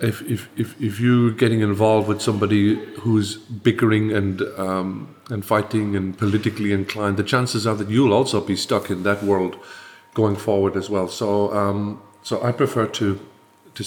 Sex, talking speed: male, 175 wpm